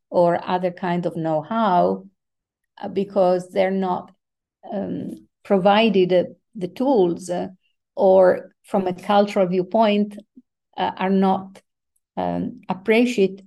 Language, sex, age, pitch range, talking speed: English, female, 50-69, 185-210 Hz, 105 wpm